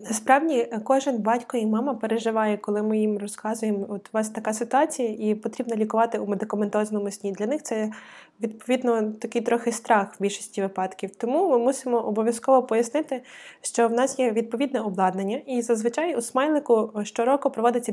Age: 20-39